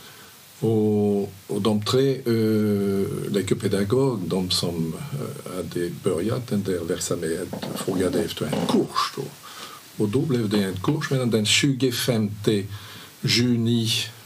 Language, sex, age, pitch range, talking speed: Swedish, male, 50-69, 100-130 Hz, 120 wpm